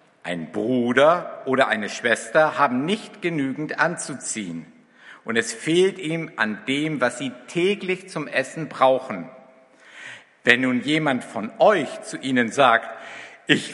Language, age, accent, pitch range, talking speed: German, 60-79, German, 135-190 Hz, 130 wpm